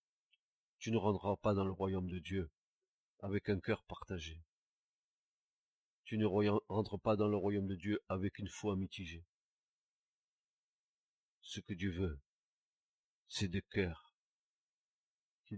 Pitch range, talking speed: 95-110 Hz, 130 wpm